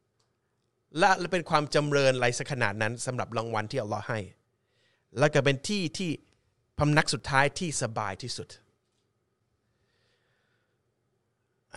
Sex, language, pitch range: male, Thai, 115-135 Hz